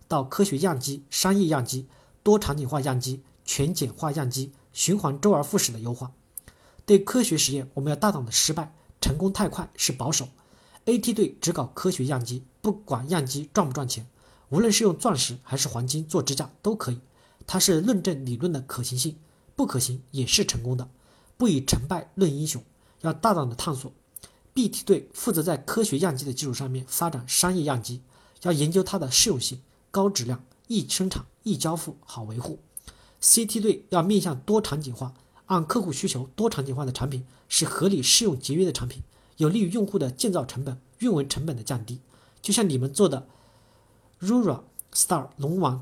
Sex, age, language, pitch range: male, 50-69, Chinese, 130-185 Hz